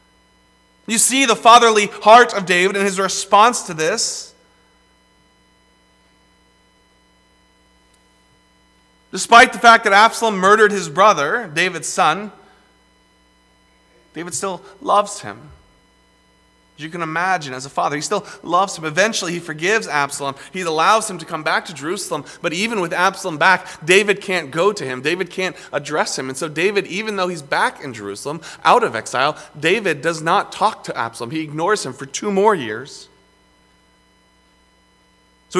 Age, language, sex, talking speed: 30-49, English, male, 150 wpm